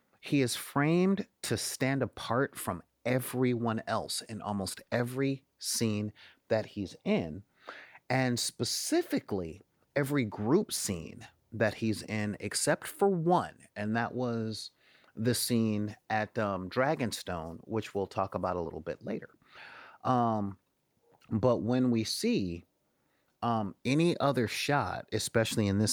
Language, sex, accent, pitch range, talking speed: English, male, American, 105-135 Hz, 125 wpm